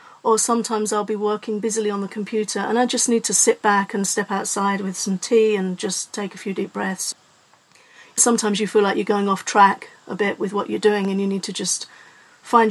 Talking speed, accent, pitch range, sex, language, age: 230 wpm, British, 195-220 Hz, female, English, 40-59